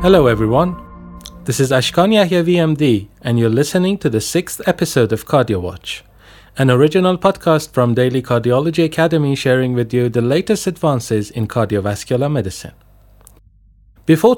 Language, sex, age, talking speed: Persian, male, 30-49, 140 wpm